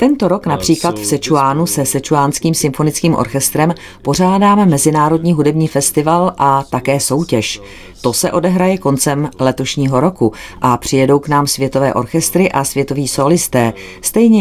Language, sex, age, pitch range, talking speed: Czech, female, 40-59, 130-160 Hz, 135 wpm